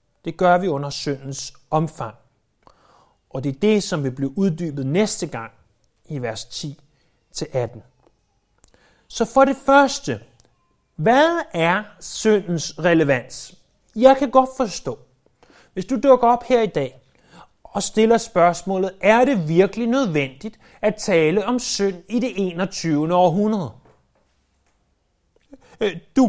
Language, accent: Danish, native